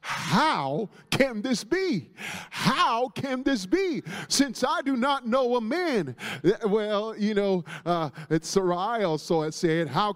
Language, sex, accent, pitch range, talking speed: English, male, American, 200-290 Hz, 140 wpm